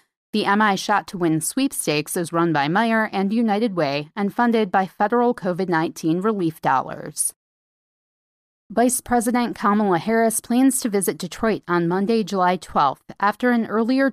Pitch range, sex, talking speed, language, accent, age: 160-220 Hz, female, 150 wpm, English, American, 30-49